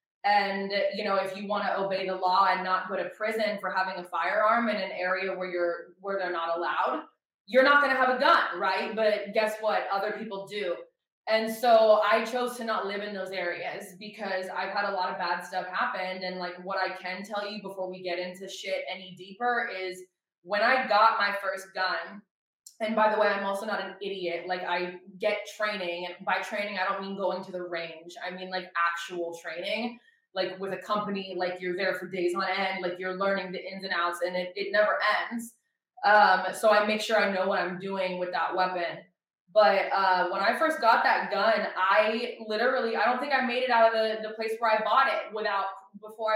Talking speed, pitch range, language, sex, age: 225 wpm, 185-220 Hz, English, female, 20-39